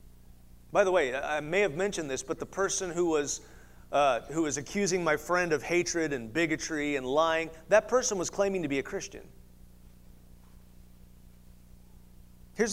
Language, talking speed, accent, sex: English, 150 wpm, American, male